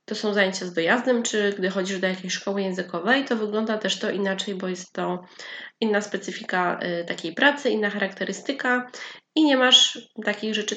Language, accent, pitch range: Polish, native, 205-255 Hz